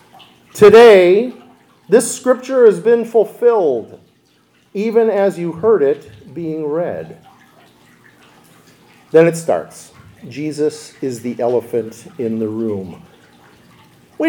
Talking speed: 100 wpm